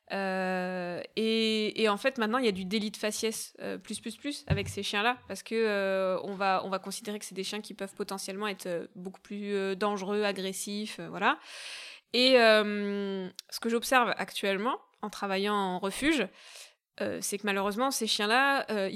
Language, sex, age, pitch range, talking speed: French, female, 20-39, 195-230 Hz, 195 wpm